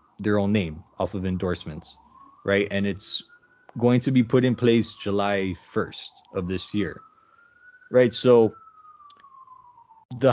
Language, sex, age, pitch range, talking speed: English, male, 20-39, 100-125 Hz, 135 wpm